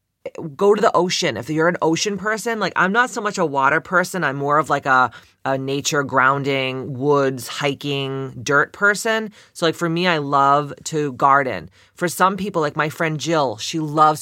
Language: English